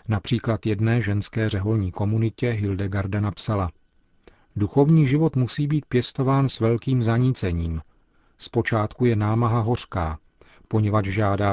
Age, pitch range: 40-59, 100-115 Hz